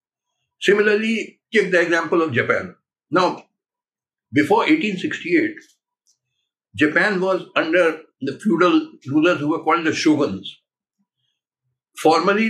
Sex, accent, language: male, native, Hindi